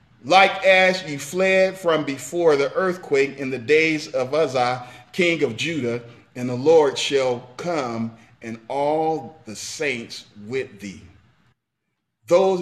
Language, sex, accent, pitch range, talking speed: English, male, American, 105-140 Hz, 135 wpm